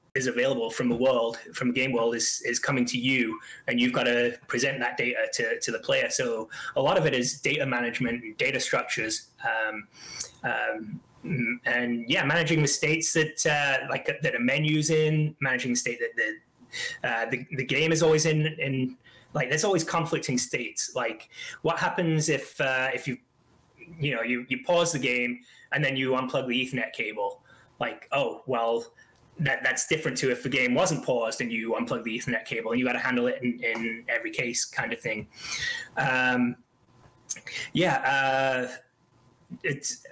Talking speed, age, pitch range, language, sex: 185 wpm, 20-39, 125-160 Hz, English, male